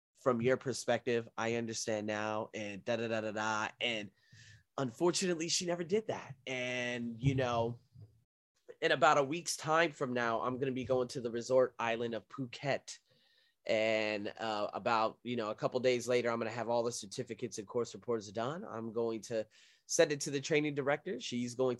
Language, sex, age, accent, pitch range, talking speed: English, male, 20-39, American, 115-145 Hz, 180 wpm